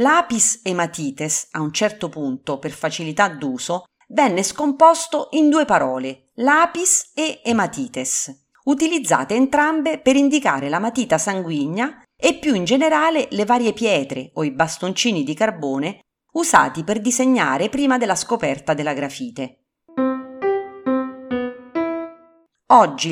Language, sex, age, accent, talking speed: Italian, female, 40-59, native, 115 wpm